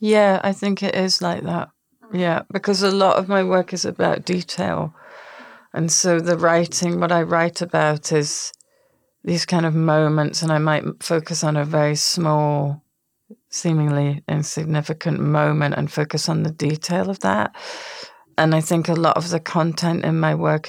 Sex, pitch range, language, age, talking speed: female, 145-170 Hz, English, 40-59, 170 wpm